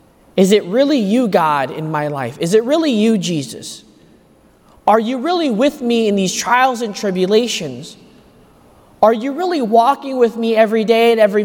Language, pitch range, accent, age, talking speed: English, 180-240 Hz, American, 20-39, 175 wpm